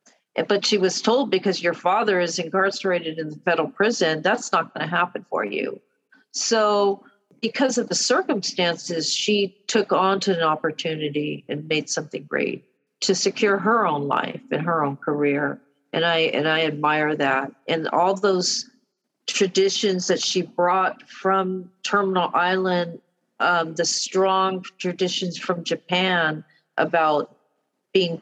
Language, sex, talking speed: English, female, 145 wpm